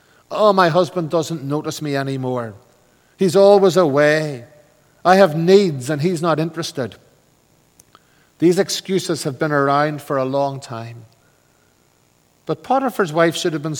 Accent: Irish